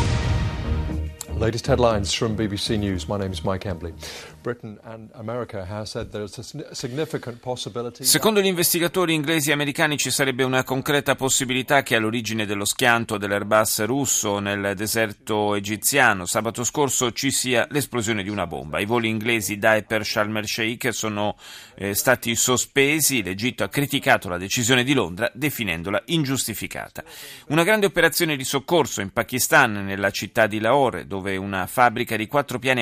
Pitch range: 105-140 Hz